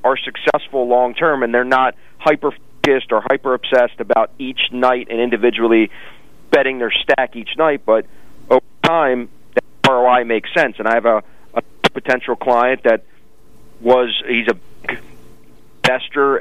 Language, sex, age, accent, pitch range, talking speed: English, male, 40-59, American, 110-130 Hz, 140 wpm